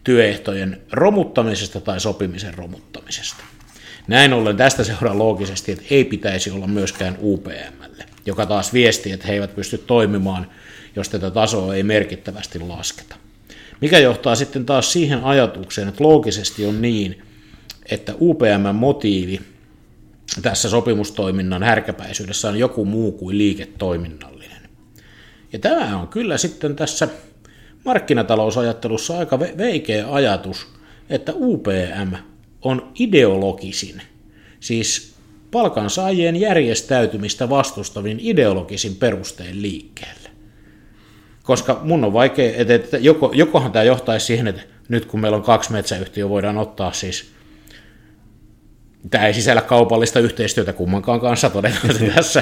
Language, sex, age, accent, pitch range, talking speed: Finnish, male, 50-69, native, 100-125 Hz, 115 wpm